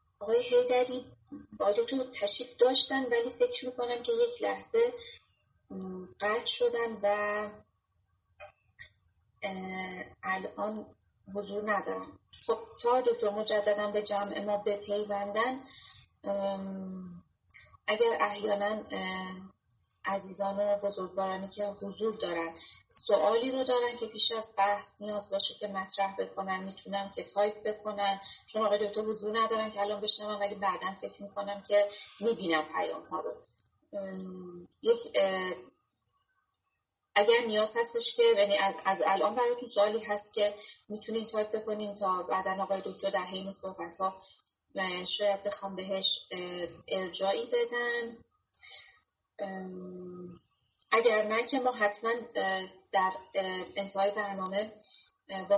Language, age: Persian, 30-49